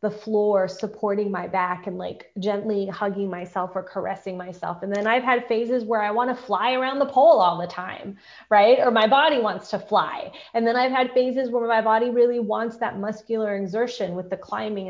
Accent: American